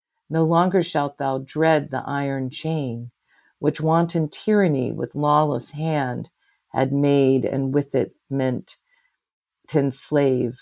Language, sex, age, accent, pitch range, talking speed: English, female, 50-69, American, 135-170 Hz, 125 wpm